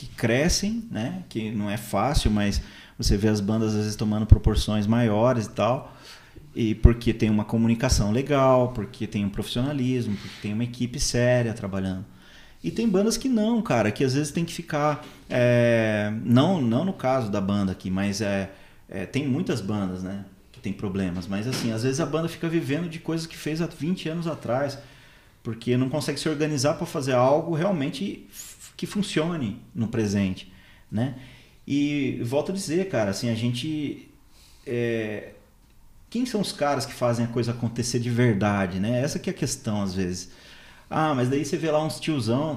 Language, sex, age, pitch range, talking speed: Portuguese, male, 30-49, 105-145 Hz, 185 wpm